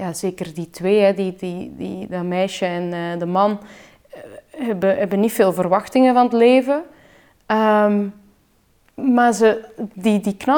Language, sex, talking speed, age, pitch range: Dutch, female, 115 wpm, 20-39, 185-225 Hz